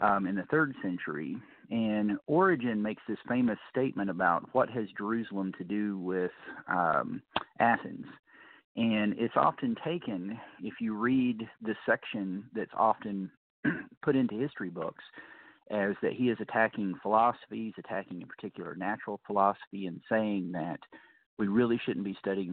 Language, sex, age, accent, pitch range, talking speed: English, male, 40-59, American, 95-115 Hz, 140 wpm